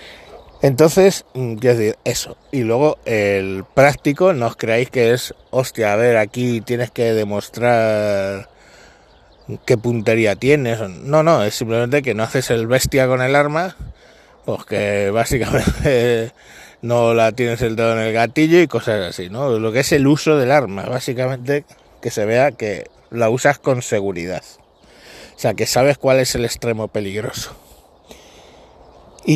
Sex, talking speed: male, 155 wpm